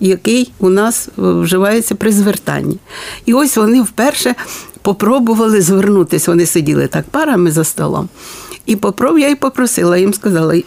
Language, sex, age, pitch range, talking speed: Ukrainian, female, 60-79, 175-235 Hz, 135 wpm